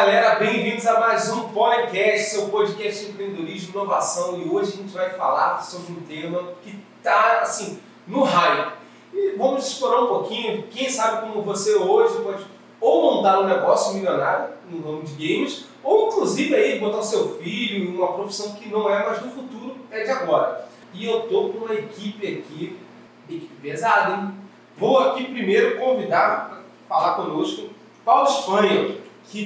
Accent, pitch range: Brazilian, 200-255 Hz